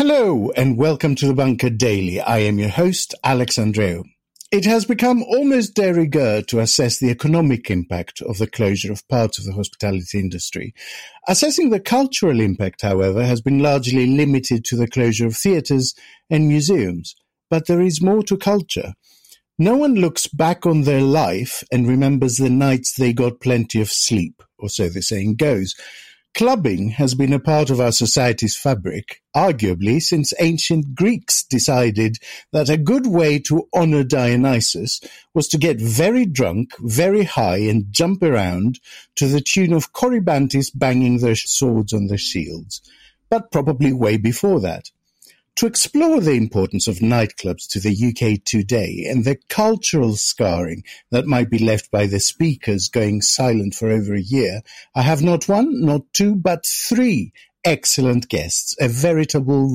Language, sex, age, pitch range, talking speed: English, male, 50-69, 110-165 Hz, 160 wpm